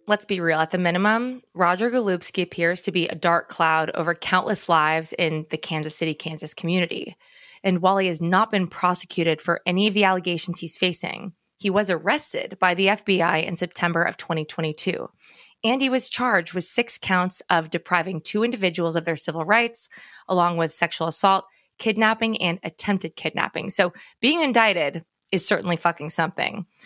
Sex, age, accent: female, 20-39, American